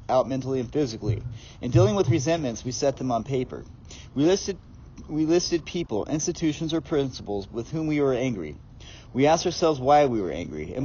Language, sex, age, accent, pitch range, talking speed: English, male, 40-59, American, 115-150 Hz, 190 wpm